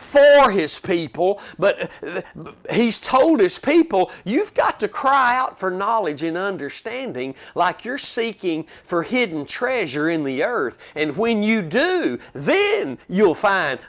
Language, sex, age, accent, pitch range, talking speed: English, male, 50-69, American, 175-255 Hz, 145 wpm